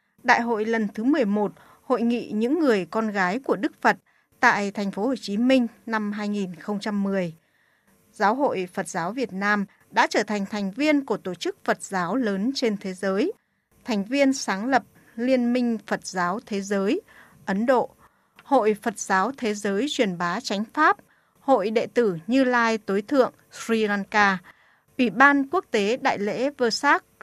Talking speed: 175 wpm